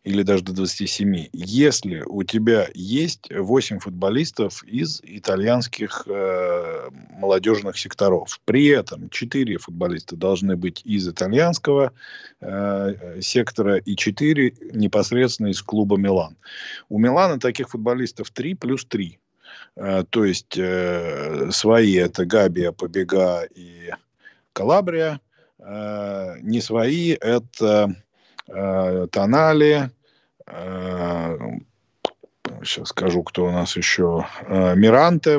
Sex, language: male, Russian